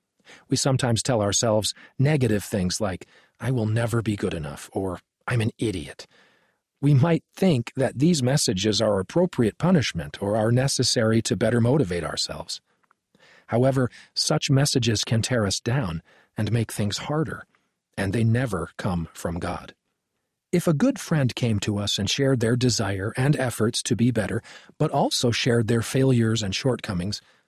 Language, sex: English, male